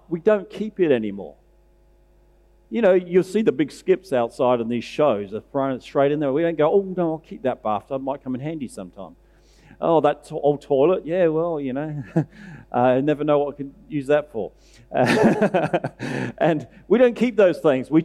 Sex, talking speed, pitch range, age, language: male, 205 wpm, 135-180 Hz, 50-69, English